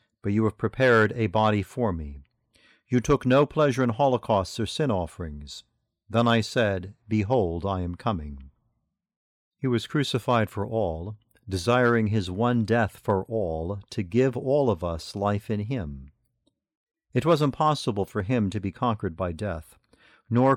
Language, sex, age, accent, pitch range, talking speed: English, male, 50-69, American, 100-125 Hz, 160 wpm